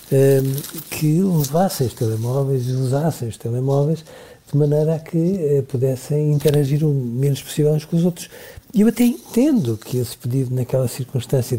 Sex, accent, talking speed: male, Portuguese, 155 wpm